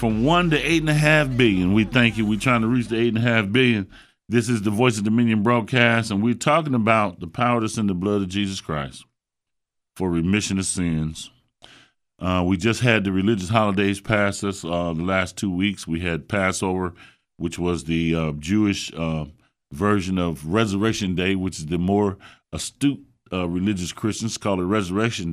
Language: English